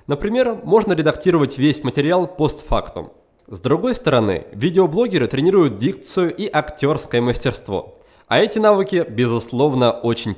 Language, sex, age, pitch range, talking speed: Russian, male, 20-39, 130-195 Hz, 115 wpm